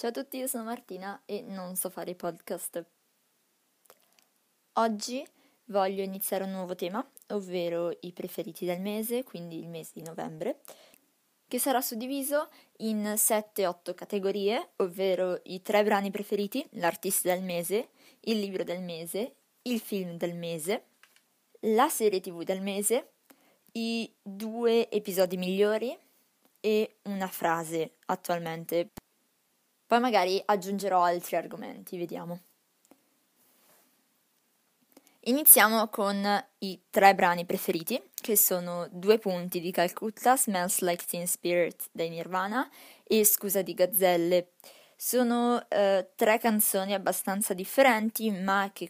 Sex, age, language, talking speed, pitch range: female, 20-39, Italian, 120 wpm, 180-225 Hz